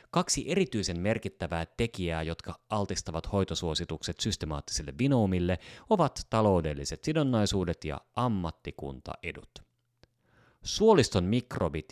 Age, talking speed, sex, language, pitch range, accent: 30-49, 80 wpm, male, Finnish, 85-120 Hz, native